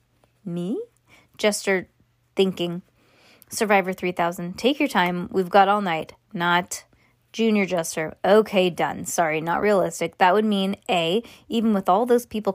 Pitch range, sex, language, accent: 180-230 Hz, female, English, American